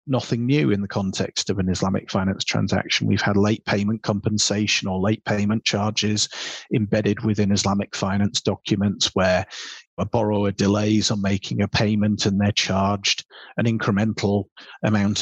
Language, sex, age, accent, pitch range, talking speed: English, male, 30-49, British, 100-115 Hz, 150 wpm